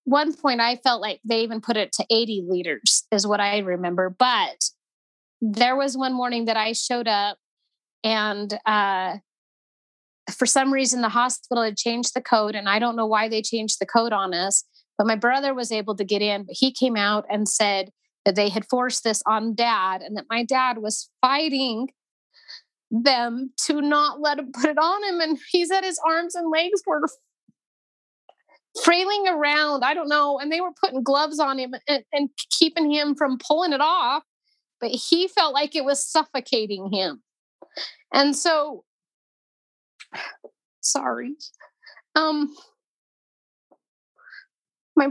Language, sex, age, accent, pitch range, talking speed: English, female, 30-49, American, 220-305 Hz, 165 wpm